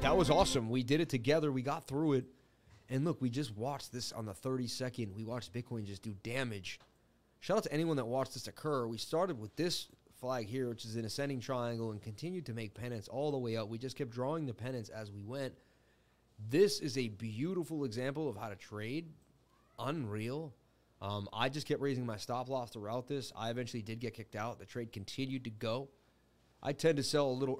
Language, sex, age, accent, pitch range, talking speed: English, male, 30-49, American, 115-145 Hz, 215 wpm